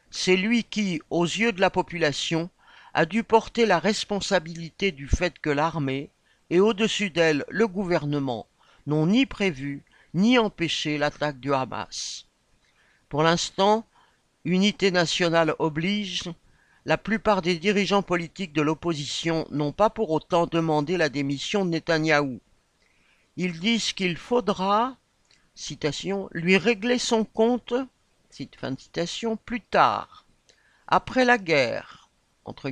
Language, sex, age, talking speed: French, male, 50-69, 125 wpm